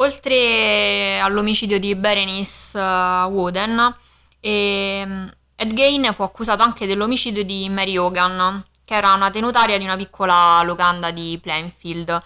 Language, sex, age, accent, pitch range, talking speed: Italian, female, 20-39, native, 165-200 Hz, 125 wpm